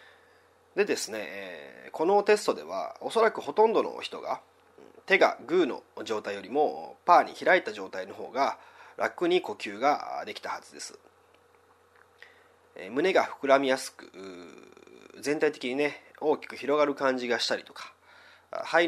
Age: 30-49